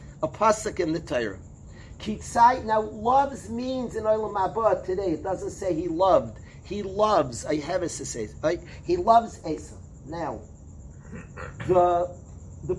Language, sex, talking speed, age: English, male, 150 wpm, 40-59